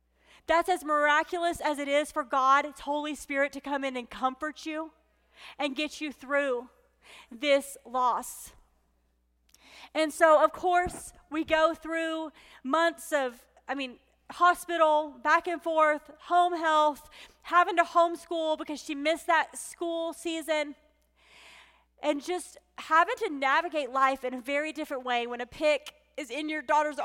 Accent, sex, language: American, female, English